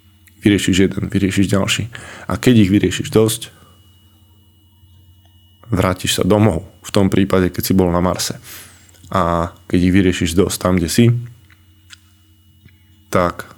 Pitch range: 95-105 Hz